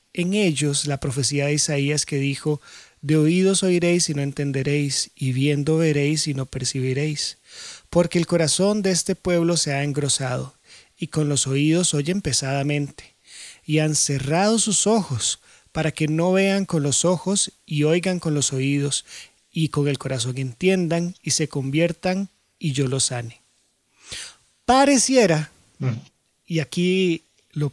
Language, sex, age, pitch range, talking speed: Spanish, male, 30-49, 140-180 Hz, 145 wpm